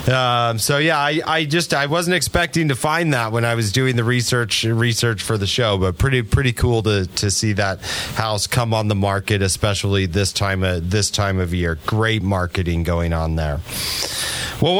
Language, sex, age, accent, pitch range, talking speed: English, male, 30-49, American, 100-125 Hz, 200 wpm